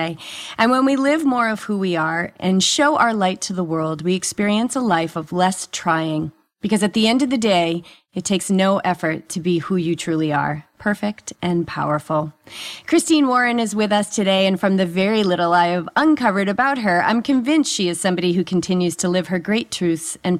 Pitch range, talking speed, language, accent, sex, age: 175-230 Hz, 210 wpm, English, American, female, 30-49